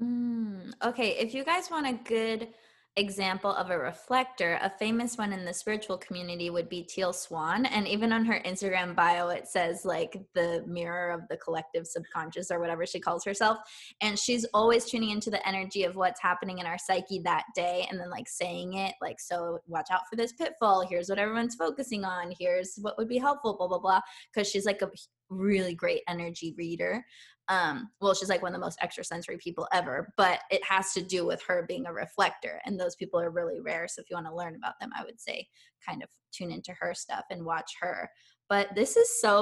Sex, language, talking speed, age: female, English, 215 wpm, 20-39